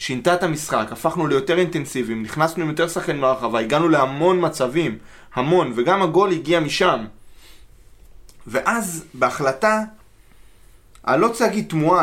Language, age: Hebrew, 20-39